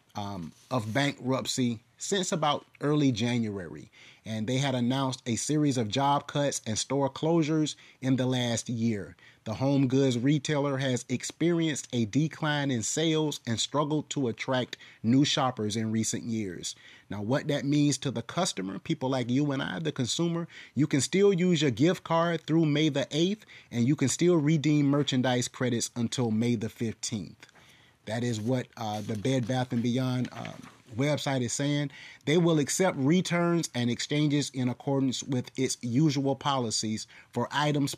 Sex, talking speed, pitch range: male, 165 wpm, 115-145 Hz